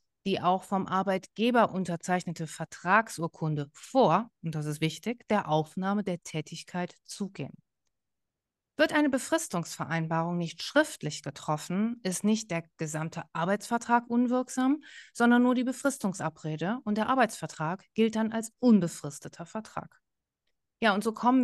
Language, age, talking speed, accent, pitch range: German, 30-49, 125 wpm, German, 170-235 Hz